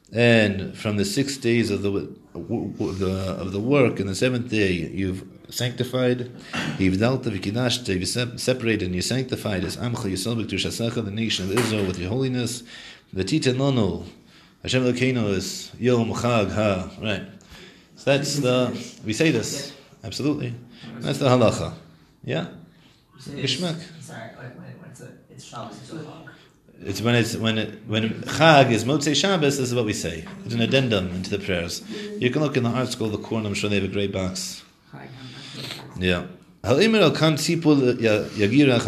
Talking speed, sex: 155 wpm, male